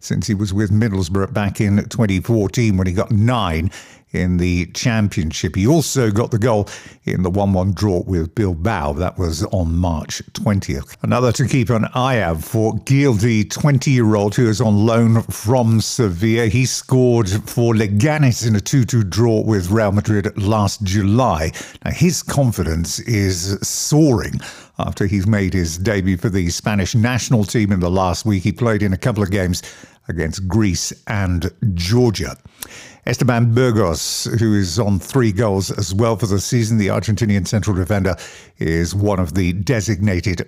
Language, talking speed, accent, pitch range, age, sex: English, 165 wpm, British, 95-120 Hz, 50-69, male